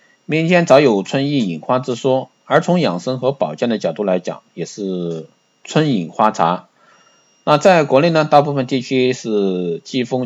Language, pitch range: Chinese, 100-130 Hz